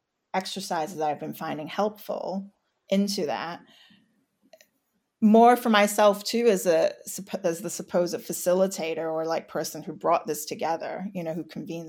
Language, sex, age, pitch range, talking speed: English, female, 30-49, 170-210 Hz, 145 wpm